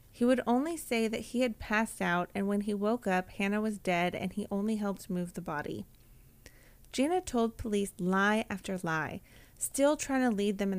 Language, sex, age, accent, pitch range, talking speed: English, female, 30-49, American, 185-230 Hz, 200 wpm